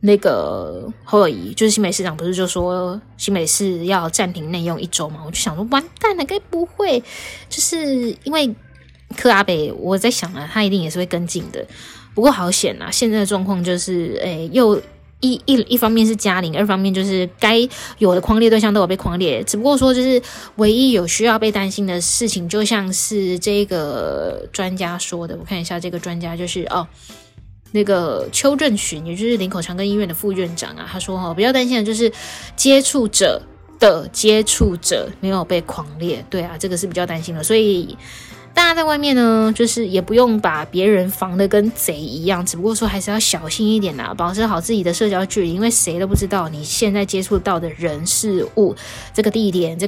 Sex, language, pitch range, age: female, Chinese, 180-220 Hz, 20-39